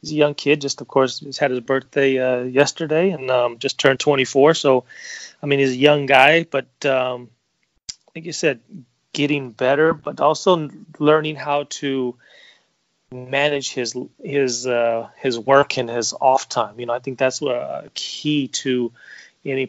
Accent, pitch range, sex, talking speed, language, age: American, 120-140 Hz, male, 170 wpm, English, 30-49